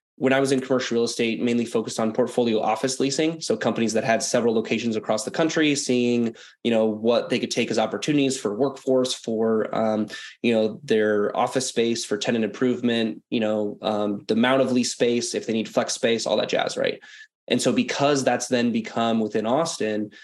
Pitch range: 110-135 Hz